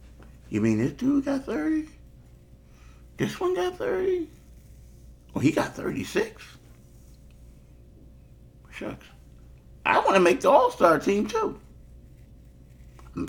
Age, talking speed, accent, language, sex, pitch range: 50-69, 115 wpm, American, English, male, 65-110 Hz